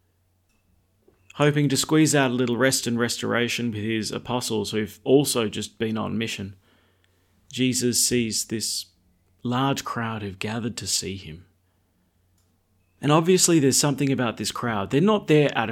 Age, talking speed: 30-49, 150 wpm